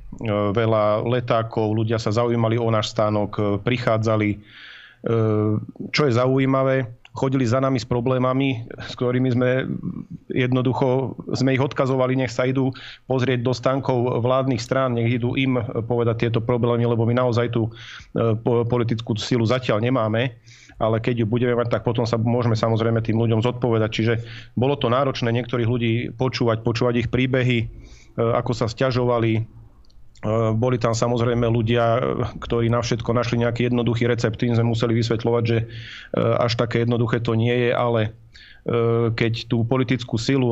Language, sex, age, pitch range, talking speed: Slovak, male, 40-59, 115-125 Hz, 145 wpm